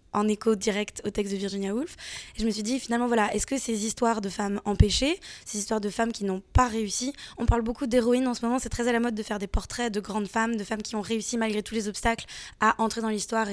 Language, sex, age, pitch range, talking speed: French, female, 20-39, 205-235 Hz, 275 wpm